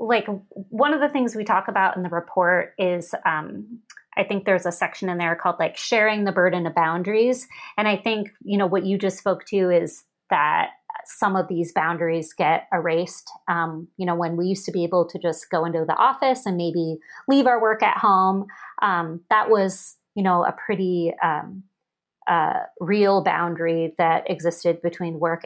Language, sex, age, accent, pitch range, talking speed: English, female, 30-49, American, 170-215 Hz, 195 wpm